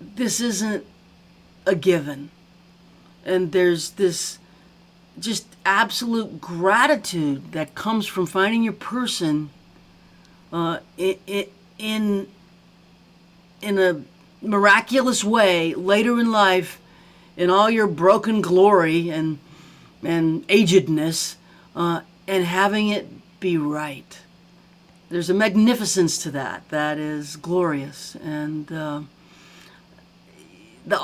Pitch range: 165-205 Hz